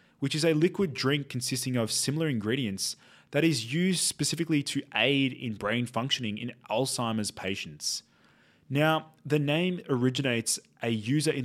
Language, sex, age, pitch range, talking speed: English, male, 20-39, 110-140 Hz, 145 wpm